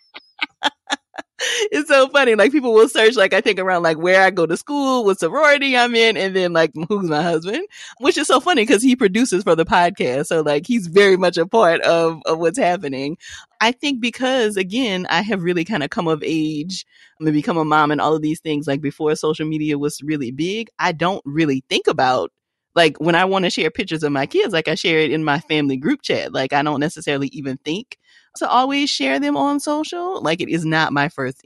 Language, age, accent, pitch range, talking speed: English, 30-49, American, 150-225 Hz, 225 wpm